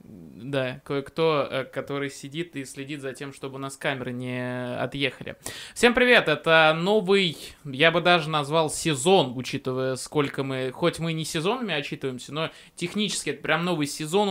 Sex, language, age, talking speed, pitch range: male, Russian, 20-39, 155 wpm, 140-175 Hz